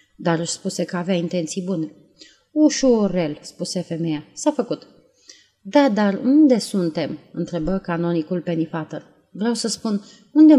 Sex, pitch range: female, 165-235 Hz